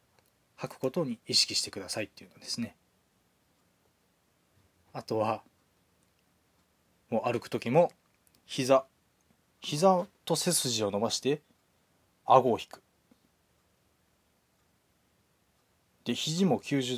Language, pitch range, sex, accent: Japanese, 95-150 Hz, male, native